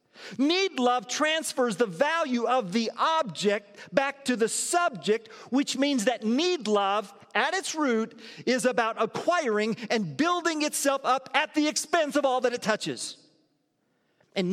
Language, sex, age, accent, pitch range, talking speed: English, male, 40-59, American, 170-270 Hz, 150 wpm